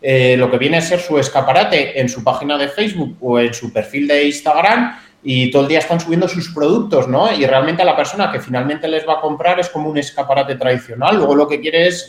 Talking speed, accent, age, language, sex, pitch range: 240 wpm, Spanish, 30-49, Spanish, male, 125-165 Hz